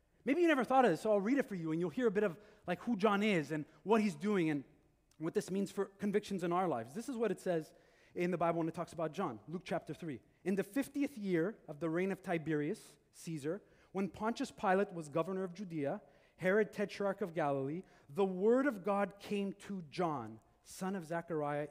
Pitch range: 160-215 Hz